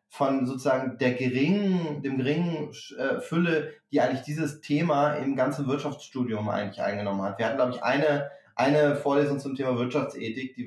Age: 30-49